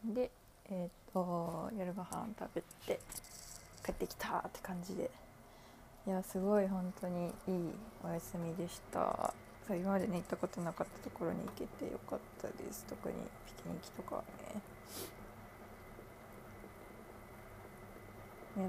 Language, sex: Japanese, female